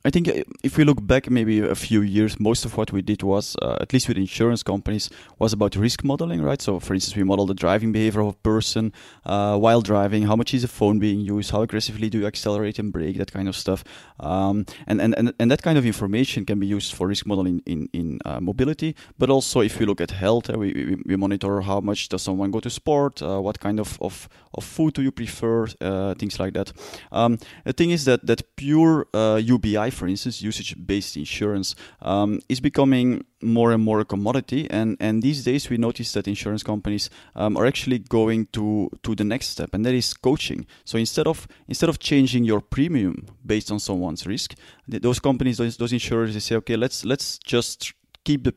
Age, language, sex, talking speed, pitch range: 20-39, English, male, 220 wpm, 100-120 Hz